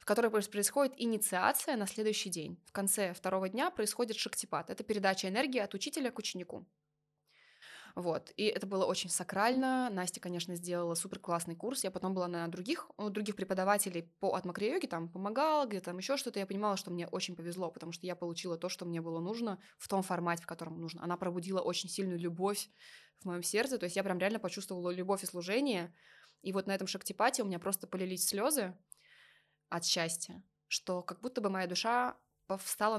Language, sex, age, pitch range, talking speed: Russian, female, 20-39, 180-230 Hz, 185 wpm